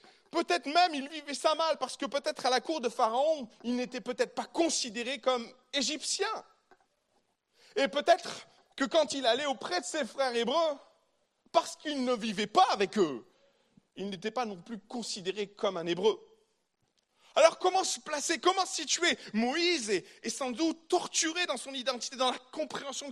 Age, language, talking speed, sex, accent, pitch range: 40-59, French, 170 wpm, male, French, 250-335 Hz